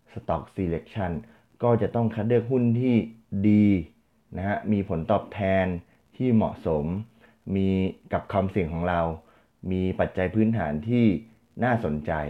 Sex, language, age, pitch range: male, Thai, 20-39, 80-110 Hz